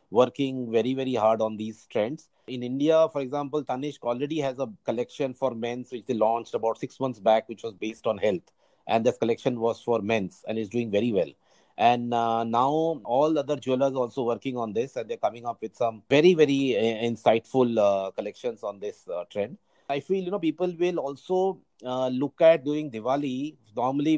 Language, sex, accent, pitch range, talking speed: English, male, Indian, 120-150 Hz, 200 wpm